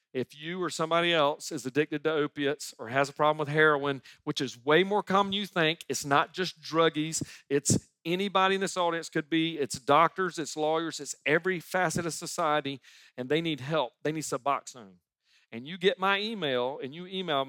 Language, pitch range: English, 140-170 Hz